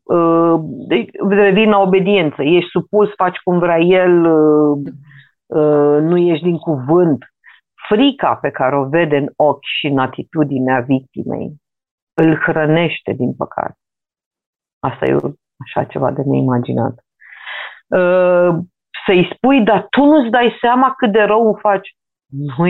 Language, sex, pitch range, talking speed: Romanian, female, 150-210 Hz, 130 wpm